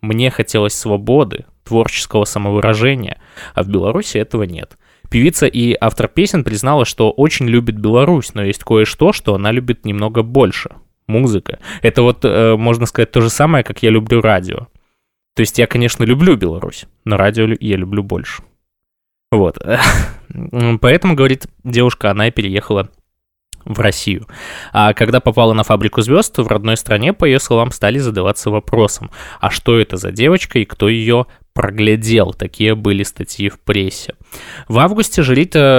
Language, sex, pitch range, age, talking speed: Russian, male, 105-130 Hz, 20-39, 150 wpm